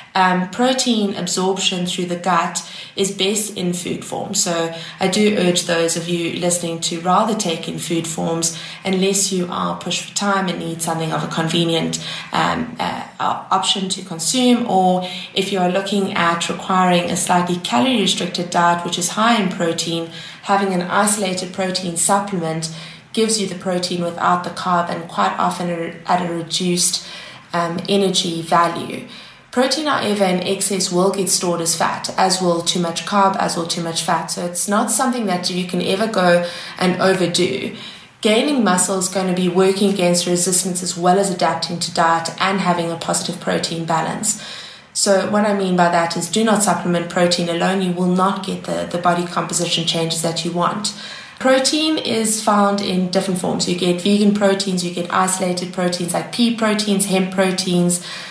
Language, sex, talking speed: English, female, 180 wpm